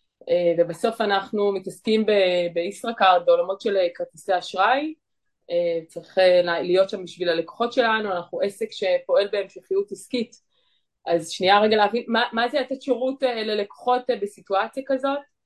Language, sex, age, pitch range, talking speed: Hebrew, female, 20-39, 180-235 Hz, 140 wpm